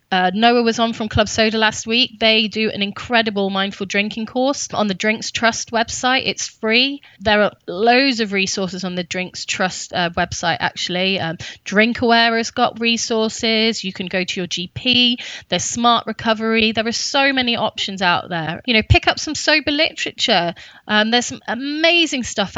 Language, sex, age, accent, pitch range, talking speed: English, female, 20-39, British, 185-235 Hz, 185 wpm